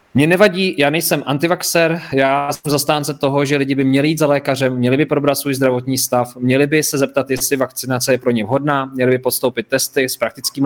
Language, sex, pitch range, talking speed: Czech, male, 125-145 Hz, 215 wpm